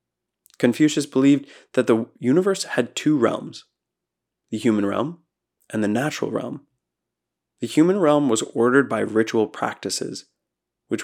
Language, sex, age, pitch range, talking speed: English, male, 20-39, 110-140 Hz, 130 wpm